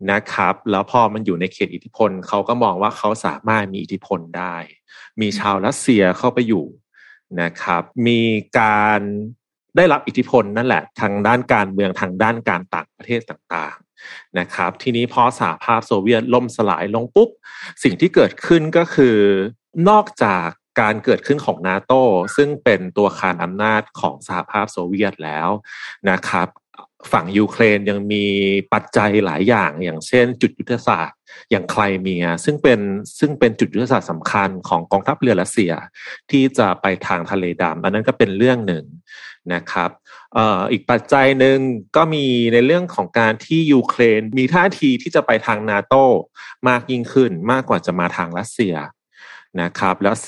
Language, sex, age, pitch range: Thai, male, 30-49, 95-125 Hz